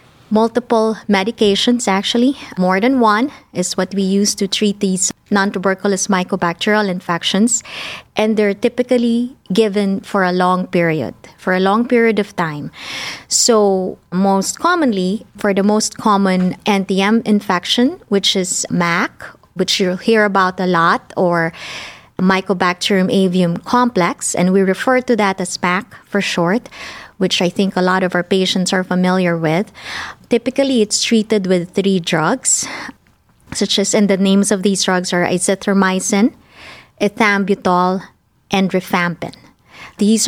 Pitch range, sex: 185-215 Hz, female